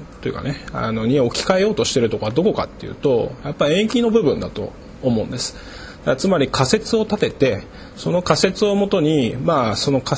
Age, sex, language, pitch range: 20-39, male, Japanese, 115-180 Hz